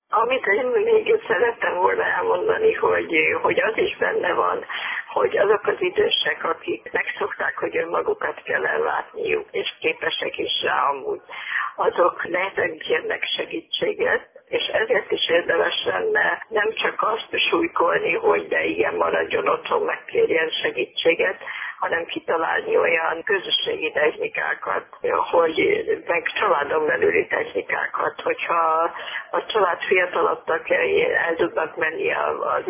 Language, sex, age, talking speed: Hungarian, female, 50-69, 120 wpm